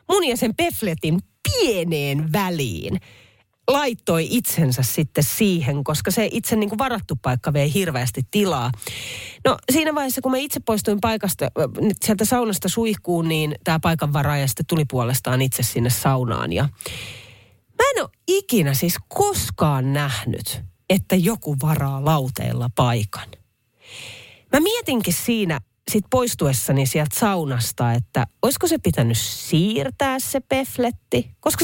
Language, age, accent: Finnish, 30-49, native